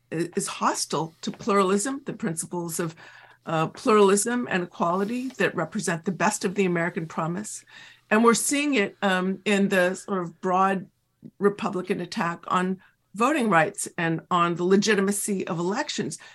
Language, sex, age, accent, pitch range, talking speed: English, female, 50-69, American, 170-205 Hz, 145 wpm